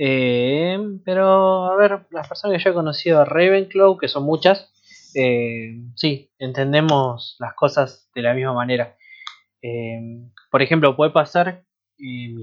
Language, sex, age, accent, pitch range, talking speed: Spanish, male, 20-39, Argentinian, 120-145 Hz, 155 wpm